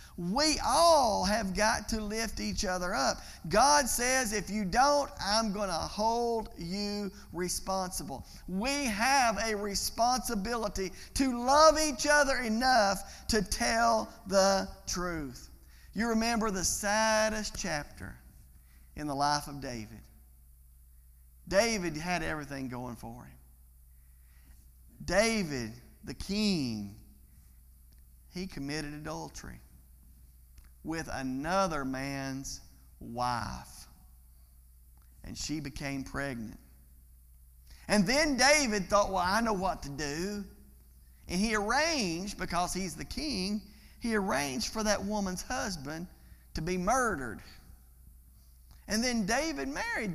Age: 50-69